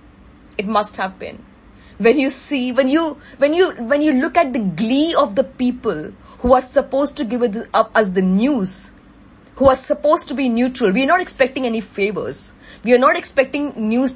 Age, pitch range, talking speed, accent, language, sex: 20-39, 215-260 Hz, 200 wpm, Indian, English, female